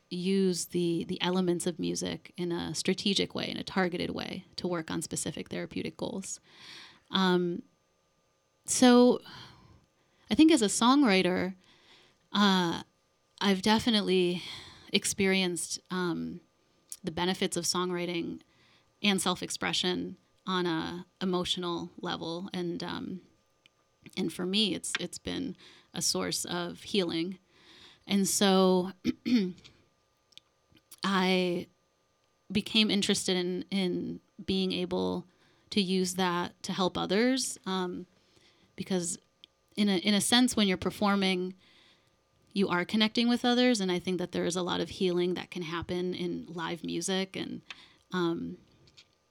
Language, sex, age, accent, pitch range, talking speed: English, female, 30-49, American, 170-195 Hz, 125 wpm